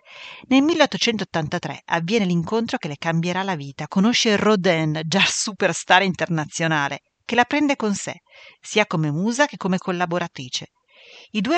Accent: native